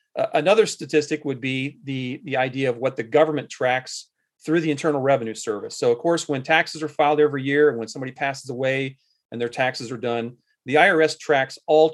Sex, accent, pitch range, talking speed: male, American, 130-165 Hz, 200 wpm